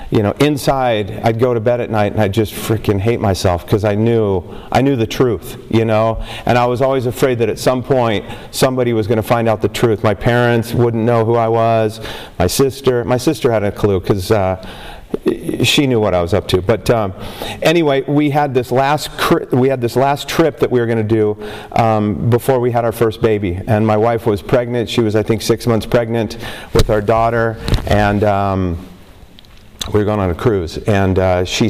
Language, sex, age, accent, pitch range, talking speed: English, male, 40-59, American, 105-125 Hz, 215 wpm